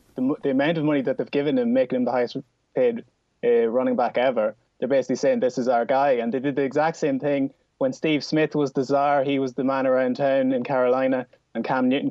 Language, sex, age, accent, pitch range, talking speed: English, male, 20-39, Irish, 125-155 Hz, 245 wpm